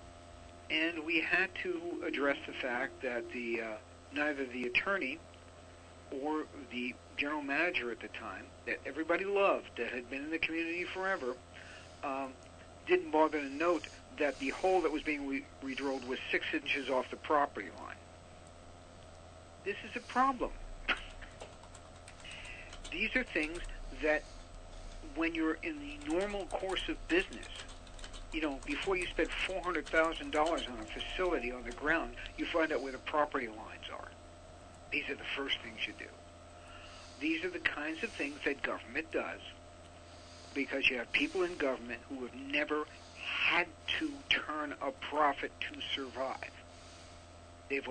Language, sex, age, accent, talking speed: English, male, 60-79, American, 150 wpm